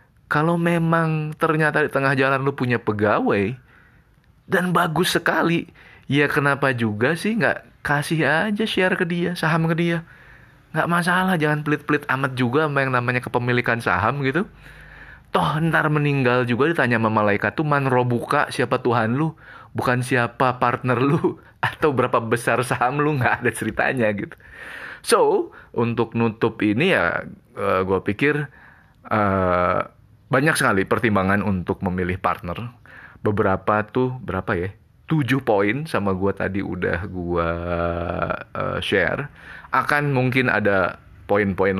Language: Indonesian